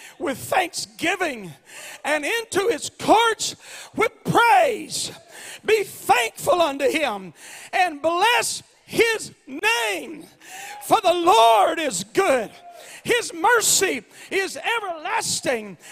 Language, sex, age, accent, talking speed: English, male, 40-59, American, 95 wpm